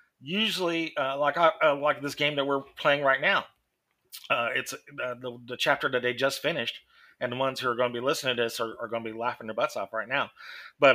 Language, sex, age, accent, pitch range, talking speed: English, male, 30-49, American, 120-160 Hz, 250 wpm